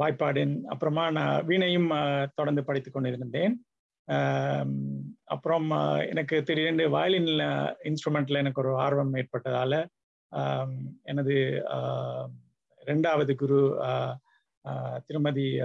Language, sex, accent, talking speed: Tamil, male, native, 75 wpm